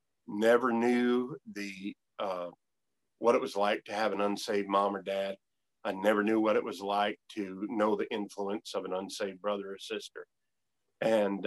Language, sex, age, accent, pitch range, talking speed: English, male, 50-69, American, 100-115 Hz, 175 wpm